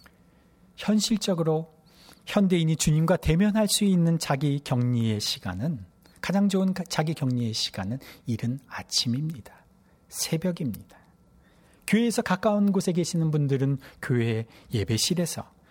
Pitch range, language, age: 130-195 Hz, Korean, 40-59